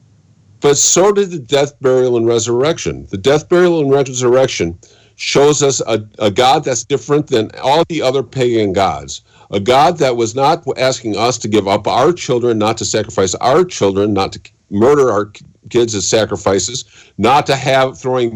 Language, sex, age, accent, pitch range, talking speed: English, male, 50-69, American, 105-135 Hz, 175 wpm